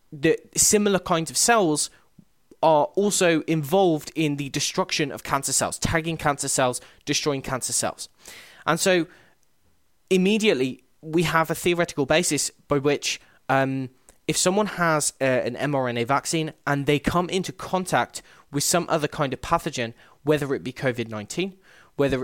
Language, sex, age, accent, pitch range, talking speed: English, male, 20-39, British, 130-170 Hz, 145 wpm